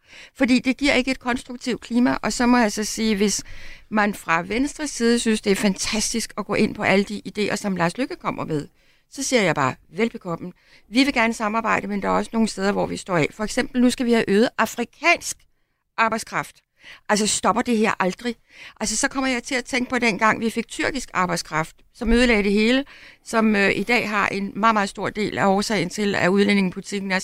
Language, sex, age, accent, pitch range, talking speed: Danish, female, 60-79, native, 200-240 Hz, 220 wpm